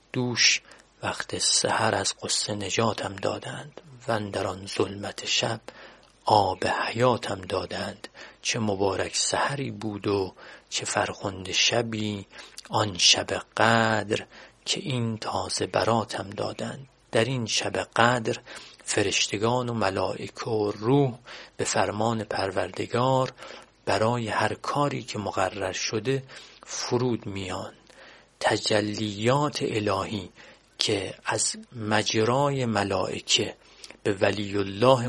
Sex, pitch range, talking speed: male, 105-125 Hz, 105 wpm